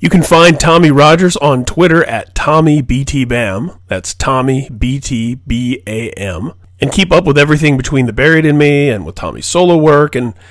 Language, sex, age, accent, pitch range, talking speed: English, male, 30-49, American, 110-155 Hz, 160 wpm